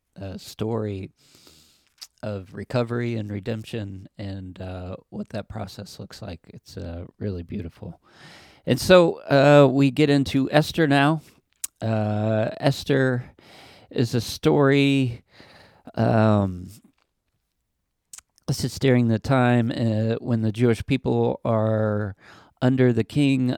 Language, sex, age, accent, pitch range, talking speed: English, male, 50-69, American, 105-125 Hz, 115 wpm